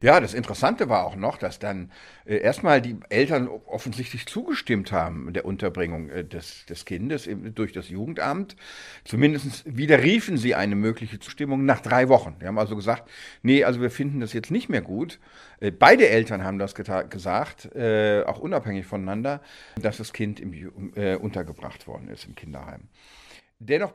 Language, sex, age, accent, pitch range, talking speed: German, male, 50-69, German, 105-140 Hz, 175 wpm